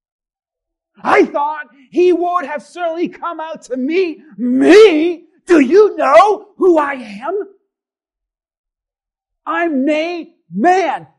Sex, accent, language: male, American, English